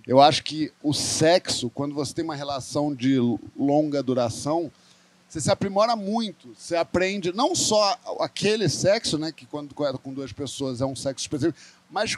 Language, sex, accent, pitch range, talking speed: Portuguese, male, Brazilian, 140-195 Hz, 175 wpm